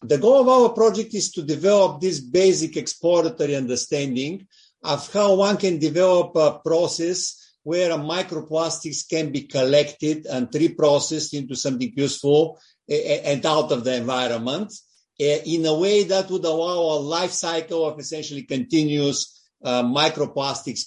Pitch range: 140-180 Hz